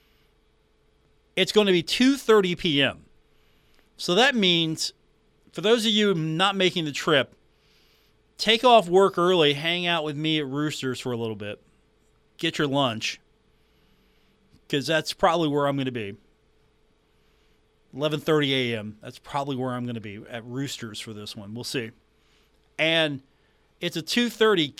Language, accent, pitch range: English, American, 135-180 Hz